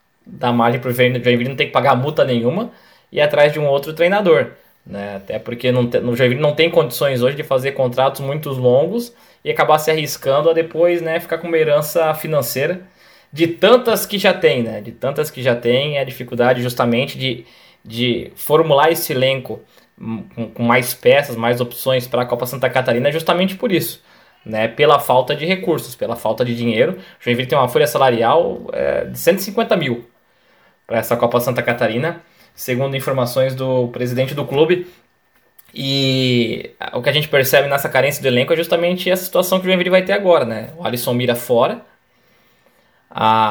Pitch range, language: 125-165 Hz, Portuguese